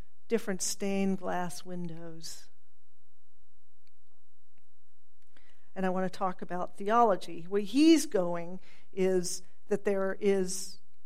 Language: English